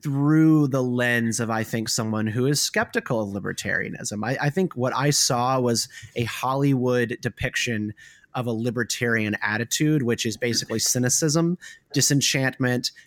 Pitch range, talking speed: 115-140 Hz, 140 wpm